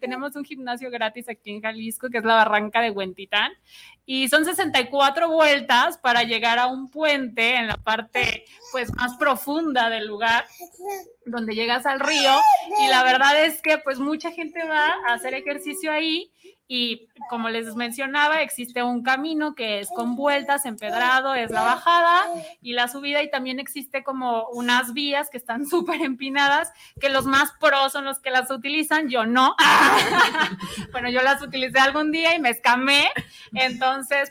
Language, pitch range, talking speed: Spanish, 245-315 Hz, 170 wpm